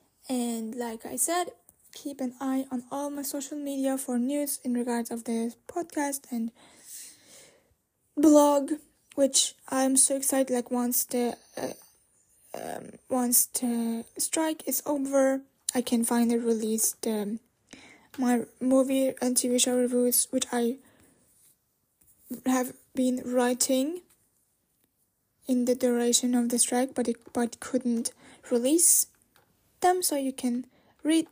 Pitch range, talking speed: 245-285 Hz, 130 wpm